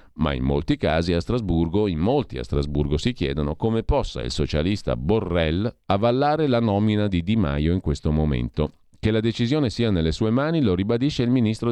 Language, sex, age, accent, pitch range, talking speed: Italian, male, 40-59, native, 80-110 Hz, 190 wpm